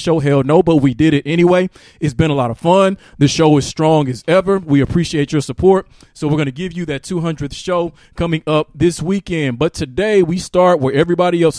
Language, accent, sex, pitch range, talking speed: English, American, male, 145-175 Hz, 230 wpm